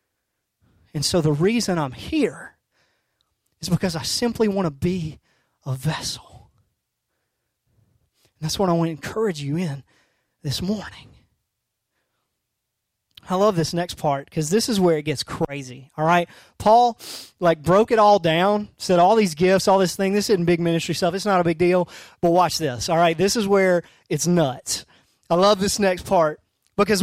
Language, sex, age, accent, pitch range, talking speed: English, male, 30-49, American, 160-220 Hz, 175 wpm